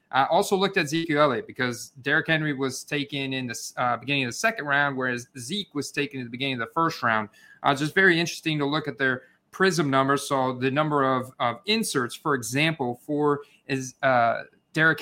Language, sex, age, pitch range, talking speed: English, male, 30-49, 135-165 Hz, 205 wpm